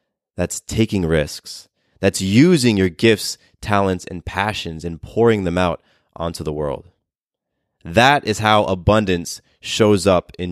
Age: 30-49